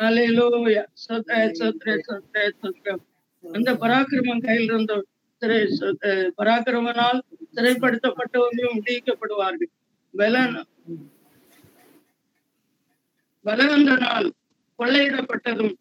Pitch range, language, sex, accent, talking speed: 210-255 Hz, Tamil, female, native, 40 wpm